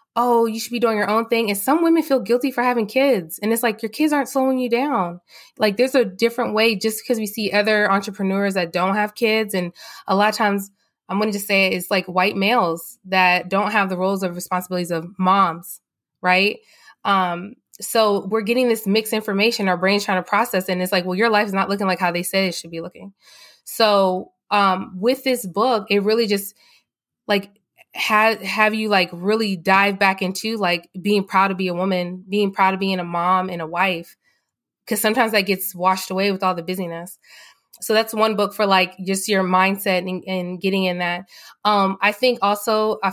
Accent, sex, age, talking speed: American, female, 20-39, 215 wpm